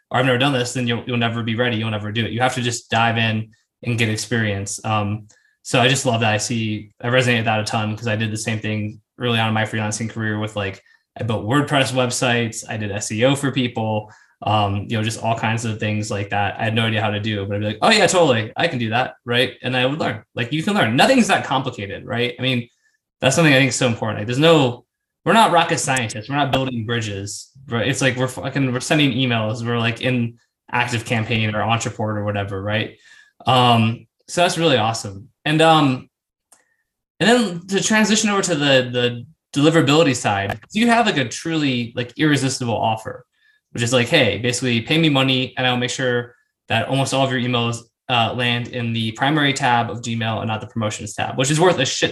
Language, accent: English, American